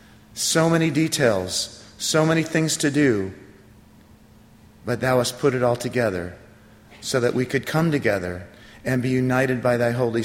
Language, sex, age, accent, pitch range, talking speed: English, male, 40-59, American, 110-130 Hz, 160 wpm